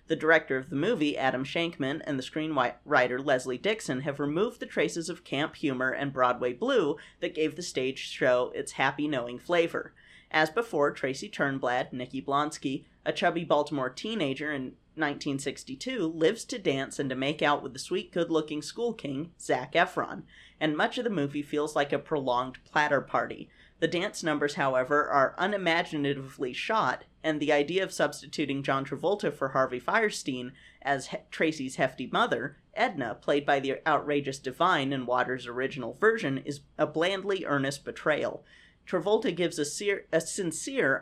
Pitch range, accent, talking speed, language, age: 135-165 Hz, American, 160 wpm, English, 40-59